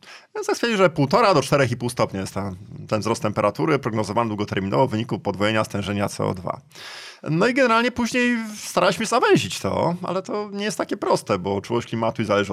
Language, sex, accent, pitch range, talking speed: Polish, male, native, 110-150 Hz, 170 wpm